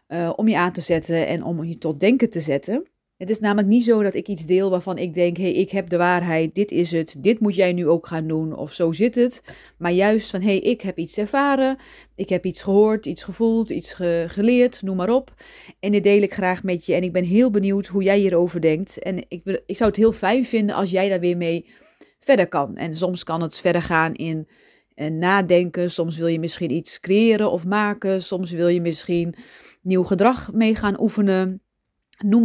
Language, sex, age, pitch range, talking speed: Dutch, female, 30-49, 170-210 Hz, 230 wpm